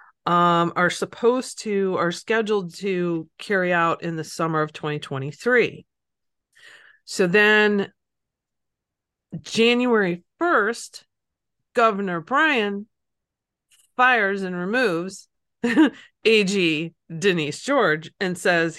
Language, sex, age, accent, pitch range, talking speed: English, female, 40-59, American, 170-215 Hz, 90 wpm